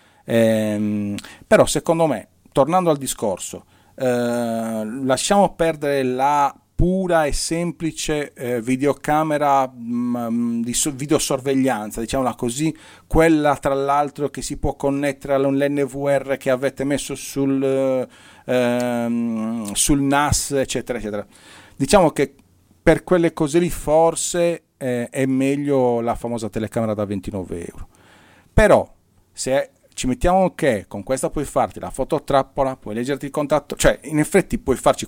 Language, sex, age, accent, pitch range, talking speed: Italian, male, 40-59, native, 115-150 Hz, 125 wpm